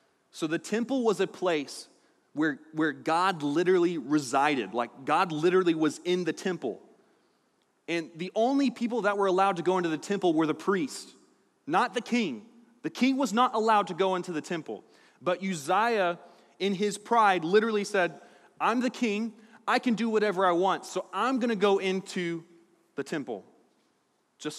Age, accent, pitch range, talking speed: 30-49, American, 155-220 Hz, 170 wpm